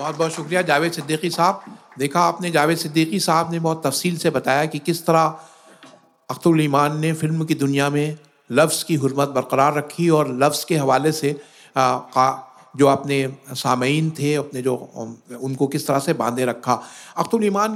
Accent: native